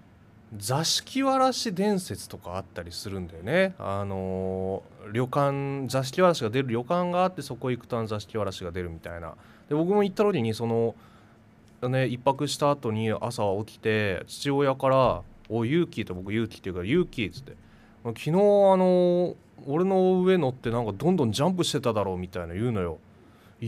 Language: Japanese